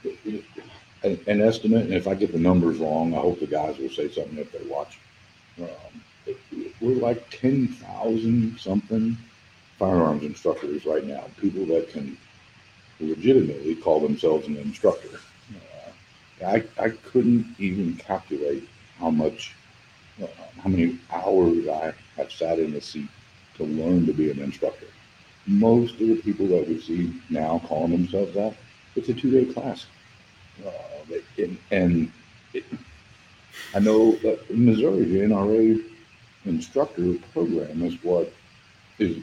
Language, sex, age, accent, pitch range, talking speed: English, male, 60-79, American, 90-115 Hz, 140 wpm